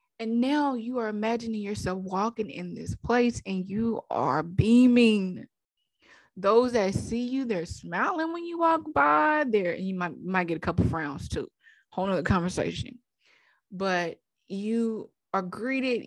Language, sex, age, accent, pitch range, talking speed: English, female, 20-39, American, 175-230 Hz, 150 wpm